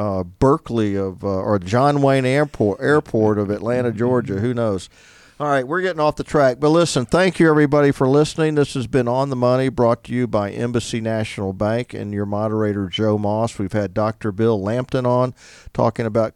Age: 50-69